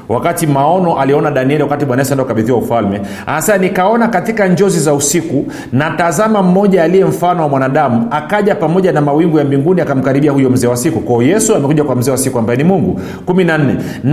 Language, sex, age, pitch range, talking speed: Swahili, male, 40-59, 145-190 Hz, 185 wpm